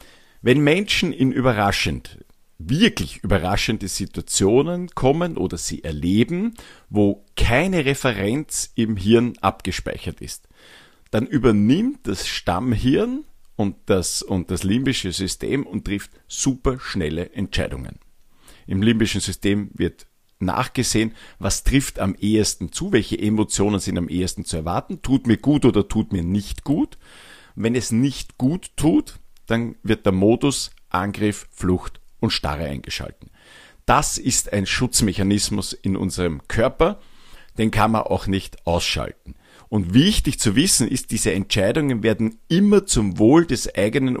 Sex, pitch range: male, 95-125 Hz